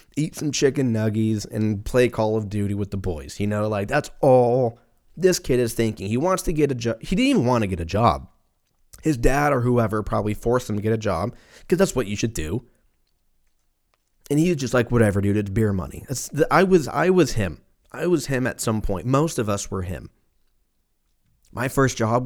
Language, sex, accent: English, male, American